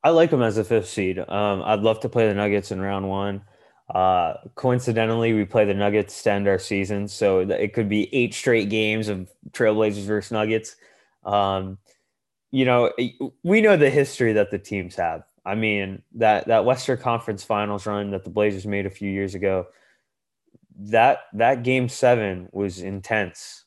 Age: 20-39